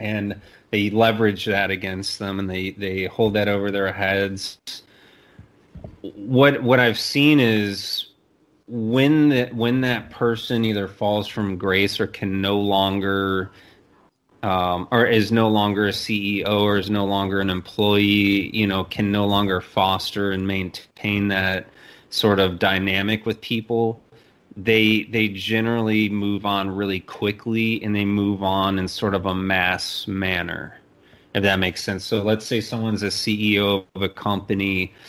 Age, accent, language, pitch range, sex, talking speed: 30-49, American, English, 95-105 Hz, male, 150 wpm